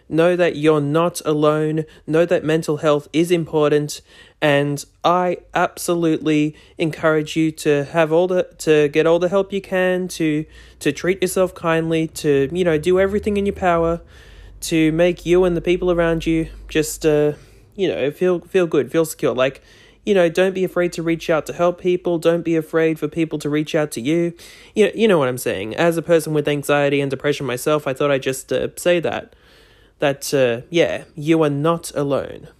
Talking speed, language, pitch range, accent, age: 200 wpm, English, 150-185 Hz, Australian, 20-39